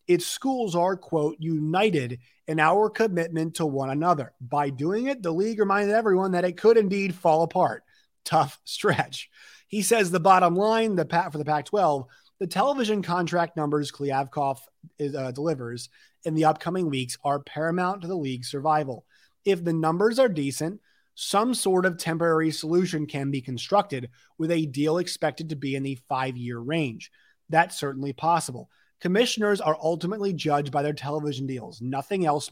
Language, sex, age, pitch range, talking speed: English, male, 30-49, 140-180 Hz, 165 wpm